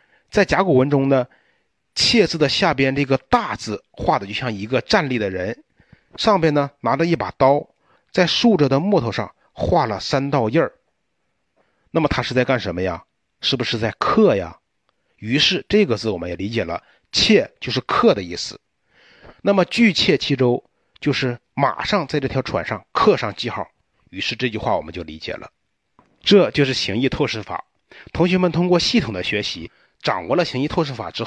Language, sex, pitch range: Chinese, male, 120-170 Hz